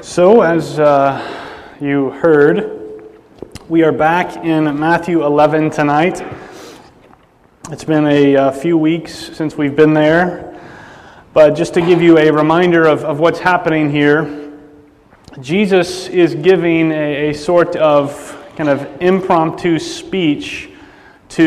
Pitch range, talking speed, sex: 145-170 Hz, 130 wpm, male